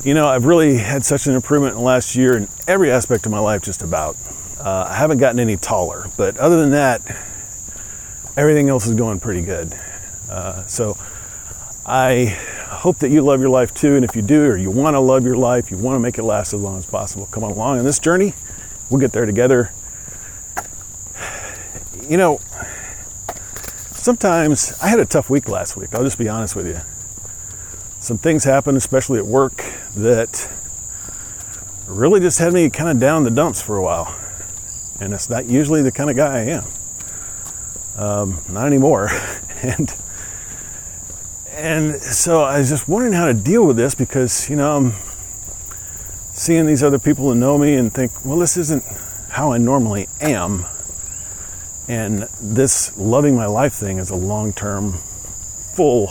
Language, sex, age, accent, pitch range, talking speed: English, male, 40-59, American, 95-135 Hz, 180 wpm